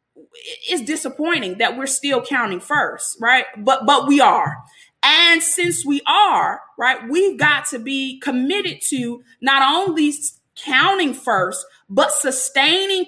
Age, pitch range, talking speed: 20-39, 250-330 Hz, 135 wpm